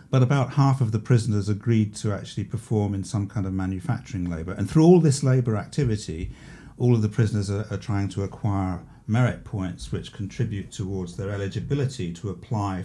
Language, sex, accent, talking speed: English, male, British, 185 wpm